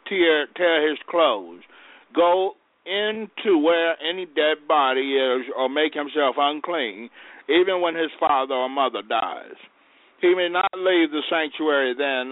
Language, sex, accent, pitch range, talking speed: English, male, American, 140-170 Hz, 140 wpm